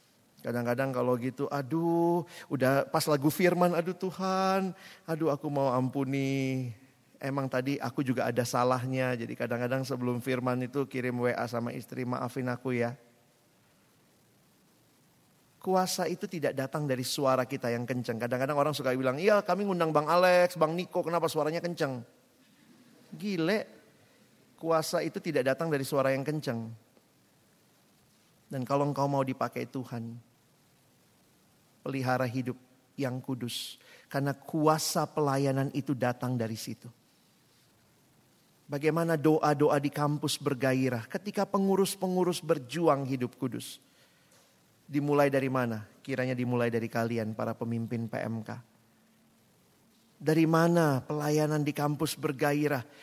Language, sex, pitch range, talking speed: Indonesian, male, 125-170 Hz, 120 wpm